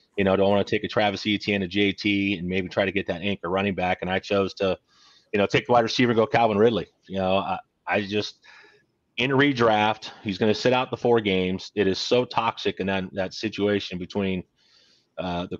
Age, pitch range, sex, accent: 30-49, 95-110 Hz, male, American